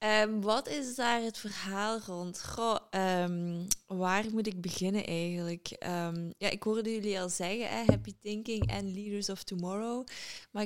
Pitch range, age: 180-210 Hz, 20-39